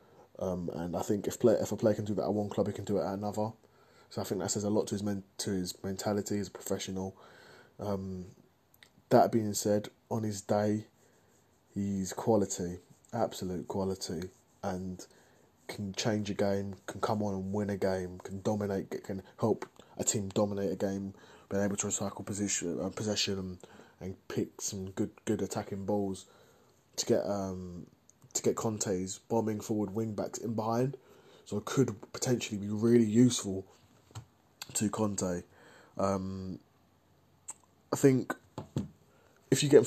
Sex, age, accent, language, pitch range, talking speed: male, 20-39, British, English, 95-110 Hz, 170 wpm